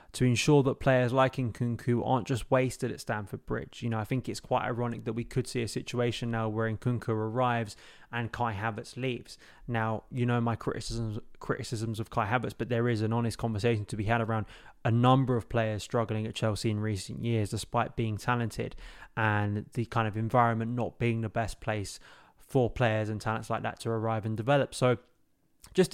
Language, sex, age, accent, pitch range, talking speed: English, male, 20-39, British, 110-125 Hz, 200 wpm